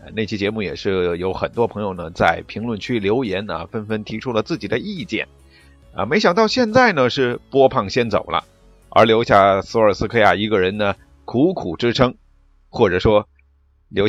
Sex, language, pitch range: male, Chinese, 100-145 Hz